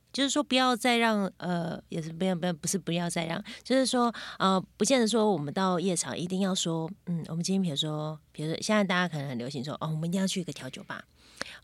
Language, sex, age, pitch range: Chinese, female, 20-39, 160-200 Hz